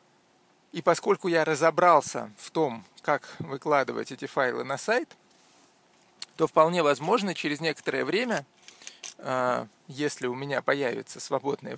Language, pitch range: Russian, 150-180 Hz